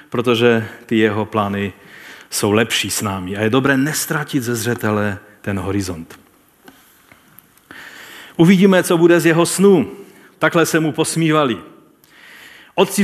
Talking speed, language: 125 wpm, Czech